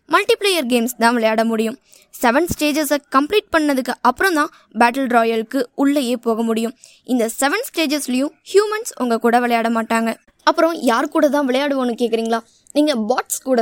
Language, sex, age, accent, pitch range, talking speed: Tamil, female, 20-39, native, 230-305 Hz, 150 wpm